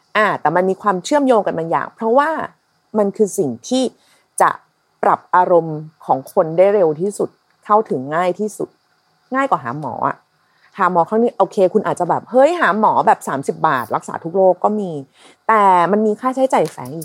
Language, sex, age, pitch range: Thai, female, 30-49, 170-235 Hz